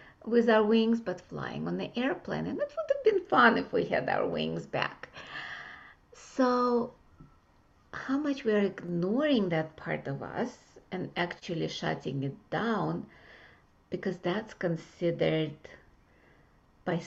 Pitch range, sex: 170-225 Hz, female